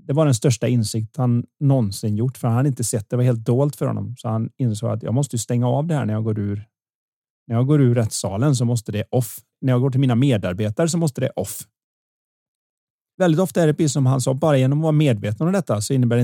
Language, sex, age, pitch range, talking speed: Swedish, male, 30-49, 115-140 Hz, 260 wpm